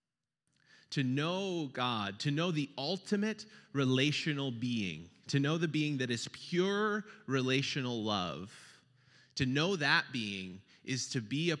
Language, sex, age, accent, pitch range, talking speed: English, male, 30-49, American, 105-145 Hz, 135 wpm